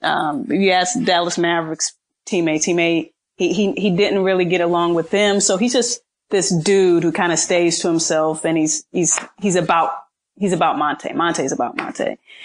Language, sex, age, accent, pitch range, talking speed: English, female, 30-49, American, 165-195 Hz, 190 wpm